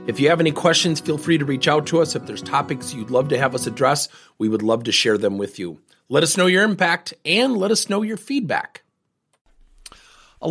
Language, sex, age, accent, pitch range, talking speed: English, male, 40-59, American, 105-170 Hz, 235 wpm